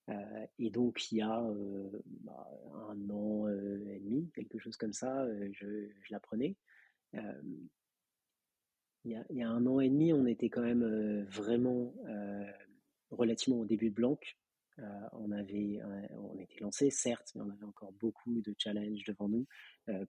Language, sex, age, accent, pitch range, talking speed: French, male, 30-49, French, 105-120 Hz, 185 wpm